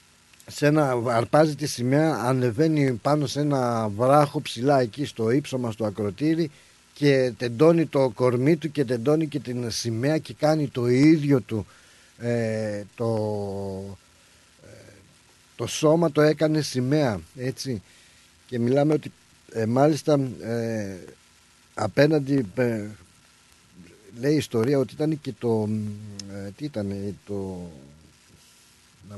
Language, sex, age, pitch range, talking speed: Greek, male, 50-69, 105-145 Hz, 120 wpm